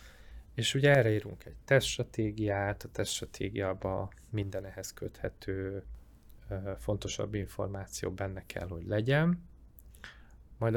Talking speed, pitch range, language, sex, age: 100 wpm, 95-115 Hz, Hungarian, male, 20-39